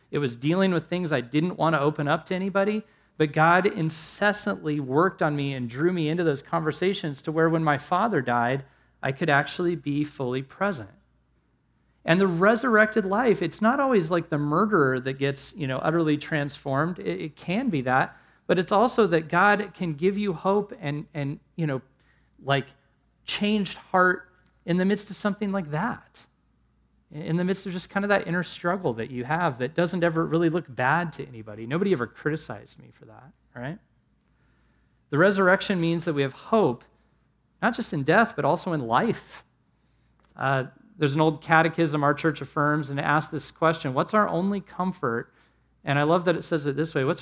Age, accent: 40-59, American